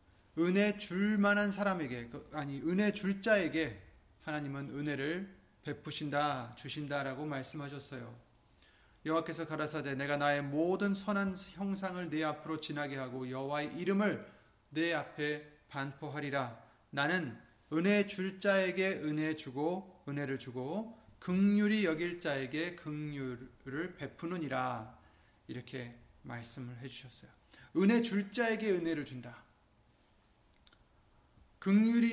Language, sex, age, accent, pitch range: Korean, male, 30-49, native, 130-185 Hz